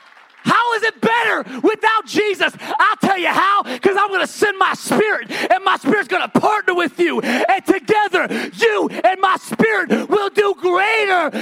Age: 30-49